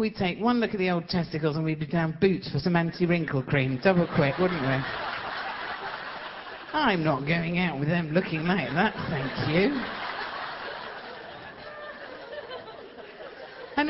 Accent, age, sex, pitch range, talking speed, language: British, 50-69, female, 140-215 Hz, 145 wpm, English